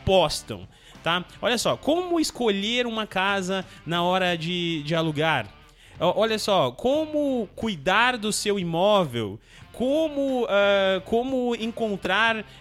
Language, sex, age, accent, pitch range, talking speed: Portuguese, male, 20-39, Brazilian, 165-205 Hz, 110 wpm